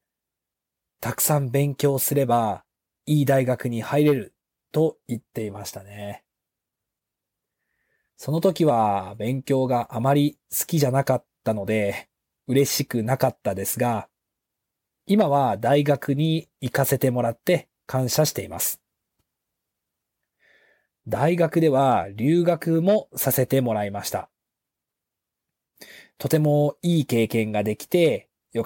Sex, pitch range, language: male, 115-155 Hz, Japanese